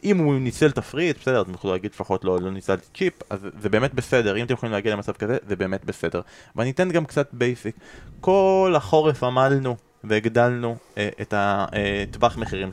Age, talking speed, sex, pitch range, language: 20-39, 195 wpm, male, 110-145 Hz, Hebrew